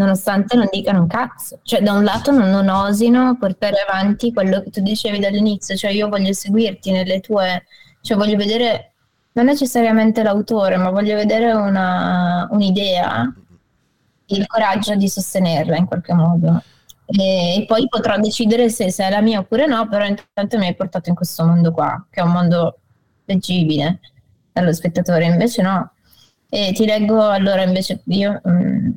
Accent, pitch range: native, 180-215 Hz